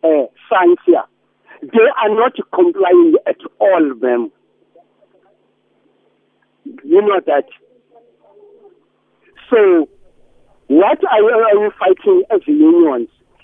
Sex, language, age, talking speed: male, English, 50-69, 90 wpm